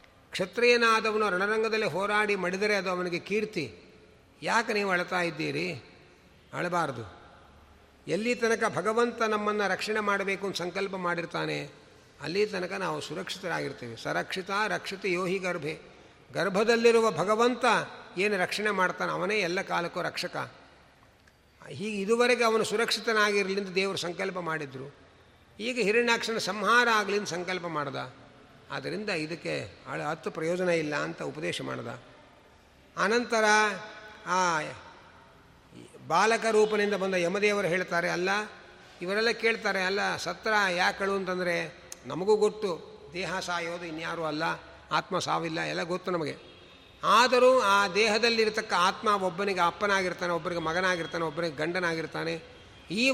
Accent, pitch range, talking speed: native, 170-215 Hz, 105 wpm